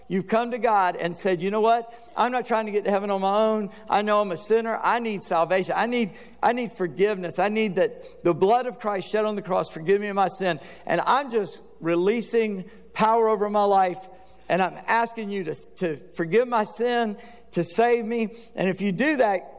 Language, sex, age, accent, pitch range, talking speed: English, male, 50-69, American, 175-220 Hz, 225 wpm